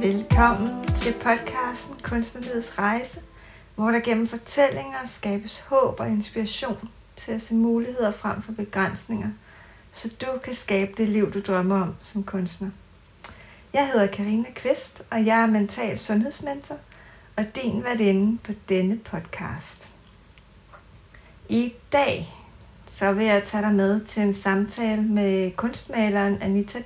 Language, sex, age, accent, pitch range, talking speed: Danish, female, 30-49, native, 200-235 Hz, 135 wpm